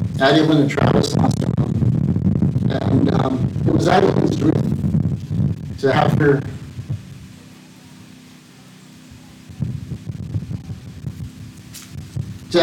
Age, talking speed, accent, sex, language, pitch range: 50-69, 70 wpm, American, male, English, 130-165 Hz